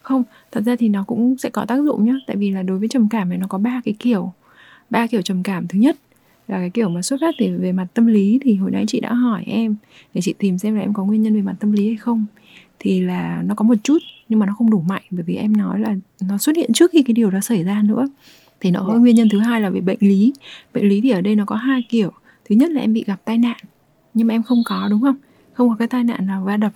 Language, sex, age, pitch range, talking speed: Vietnamese, female, 20-39, 195-235 Hz, 305 wpm